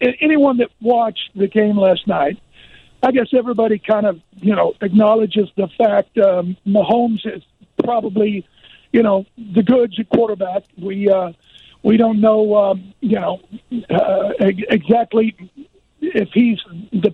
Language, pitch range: English, 200-240 Hz